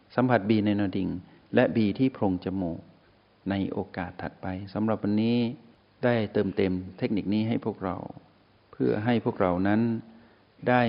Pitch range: 95-120 Hz